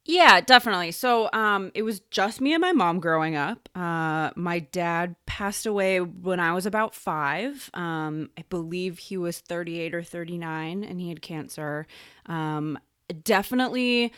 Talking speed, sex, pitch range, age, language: 155 wpm, female, 160-215 Hz, 20-39, English